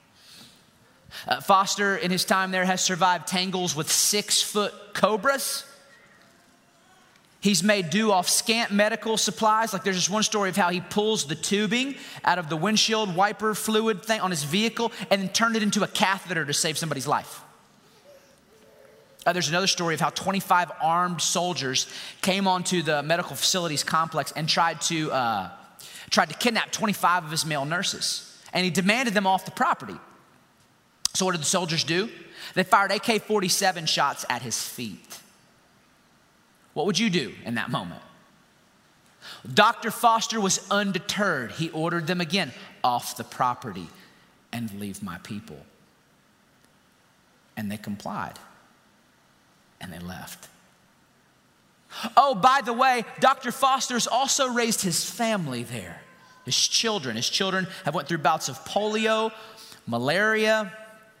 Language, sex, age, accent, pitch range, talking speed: English, male, 30-49, American, 170-220 Hz, 145 wpm